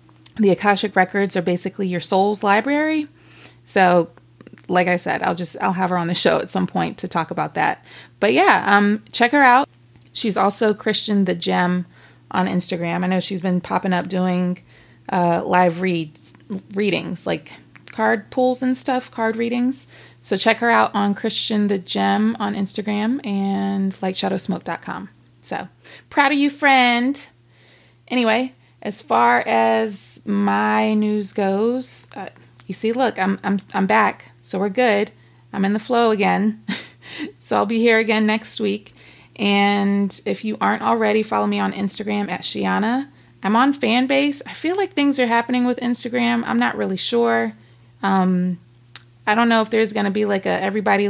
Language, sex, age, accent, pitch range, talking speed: English, female, 20-39, American, 180-225 Hz, 170 wpm